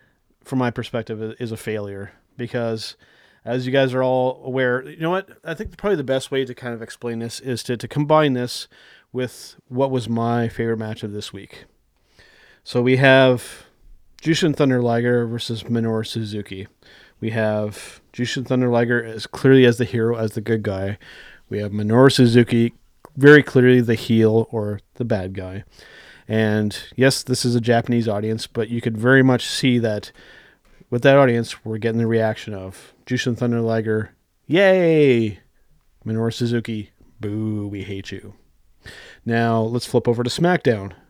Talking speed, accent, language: 170 wpm, American, English